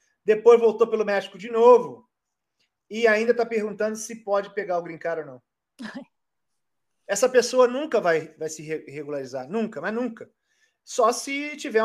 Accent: Brazilian